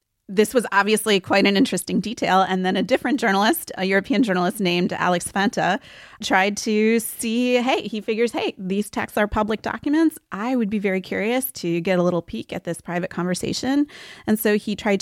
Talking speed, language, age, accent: 190 wpm, English, 30-49, American